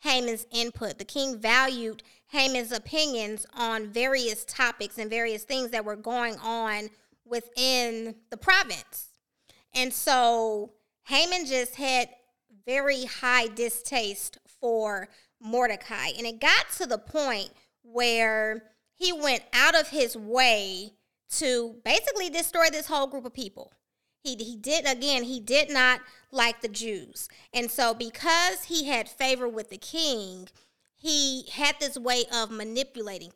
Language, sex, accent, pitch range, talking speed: English, female, American, 220-270 Hz, 135 wpm